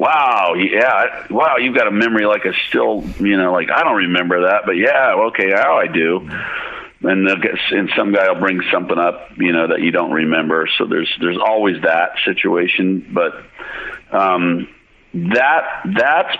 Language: English